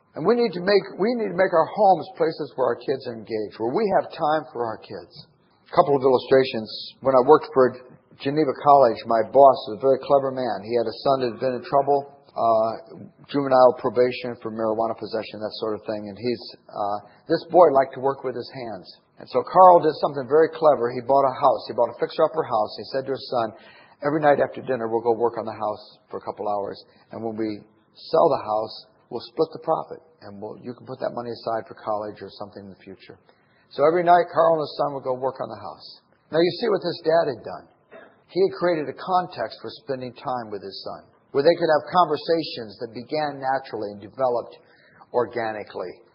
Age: 50-69